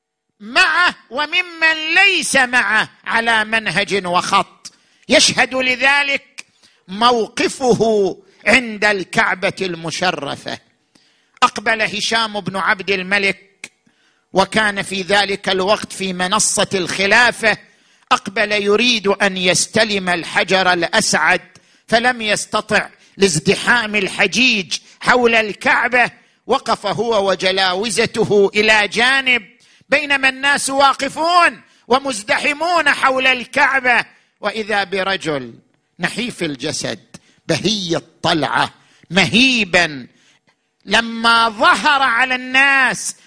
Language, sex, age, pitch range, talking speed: Arabic, male, 50-69, 195-260 Hz, 80 wpm